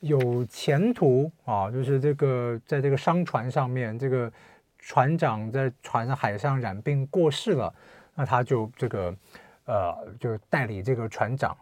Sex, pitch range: male, 130-170 Hz